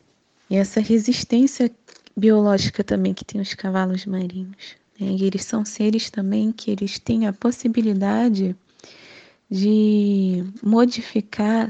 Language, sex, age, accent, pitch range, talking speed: Portuguese, female, 20-39, Brazilian, 195-225 Hz, 120 wpm